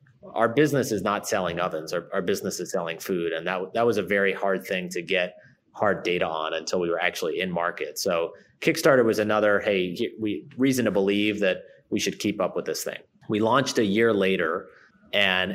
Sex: male